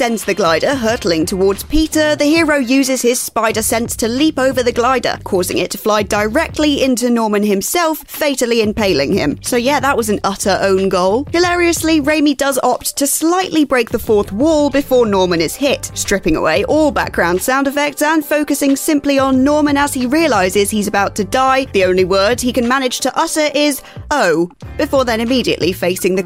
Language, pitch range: English, 215-285 Hz